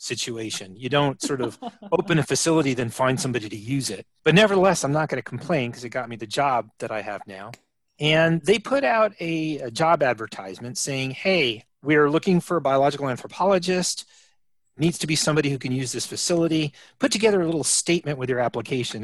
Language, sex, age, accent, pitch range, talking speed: English, male, 40-59, American, 130-160 Hz, 200 wpm